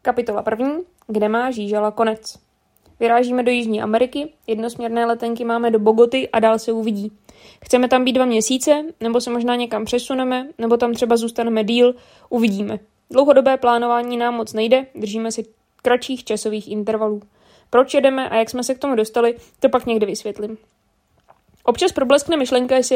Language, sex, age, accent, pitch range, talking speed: Czech, female, 20-39, native, 225-260 Hz, 160 wpm